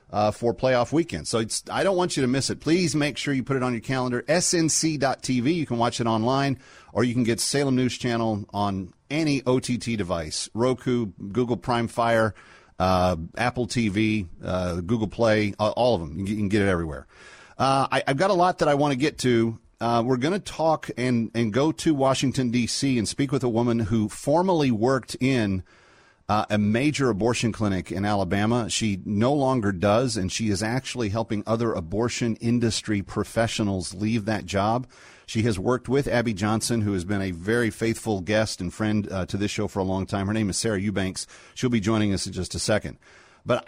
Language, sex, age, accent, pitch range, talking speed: English, male, 40-59, American, 105-130 Hz, 200 wpm